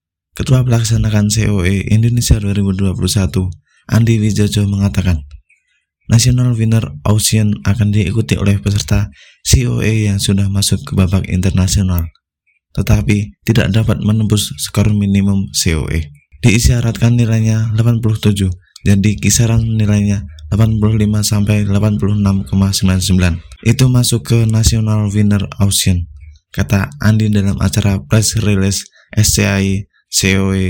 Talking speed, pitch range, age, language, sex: 100 wpm, 95-110 Hz, 20-39, Indonesian, male